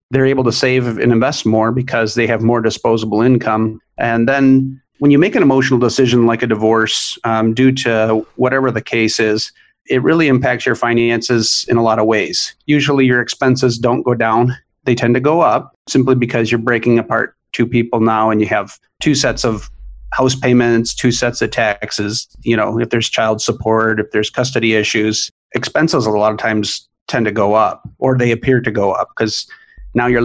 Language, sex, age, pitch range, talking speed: English, male, 40-59, 110-130 Hz, 200 wpm